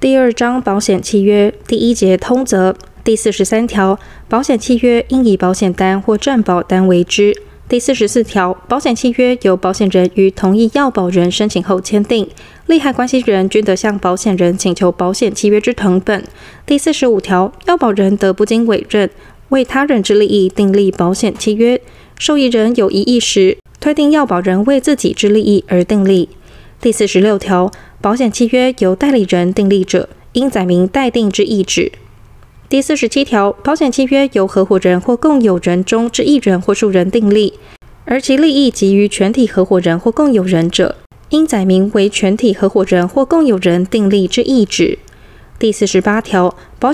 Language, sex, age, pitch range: Chinese, female, 20-39, 190-245 Hz